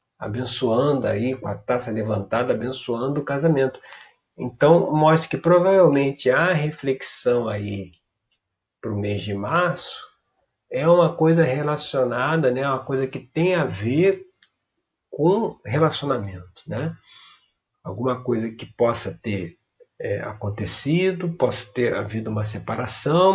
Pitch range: 120-170 Hz